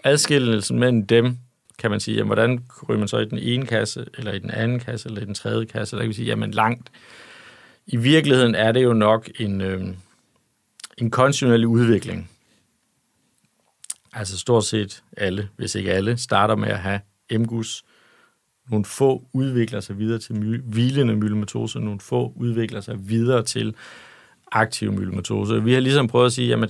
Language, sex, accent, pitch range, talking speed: Danish, male, native, 110-125 Hz, 175 wpm